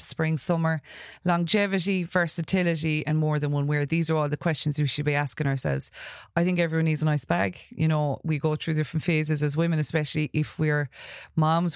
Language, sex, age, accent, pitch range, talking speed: English, female, 30-49, Irish, 135-160 Hz, 200 wpm